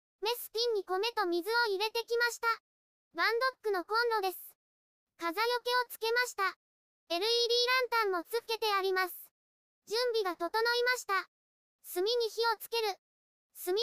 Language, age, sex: Japanese, 20-39, male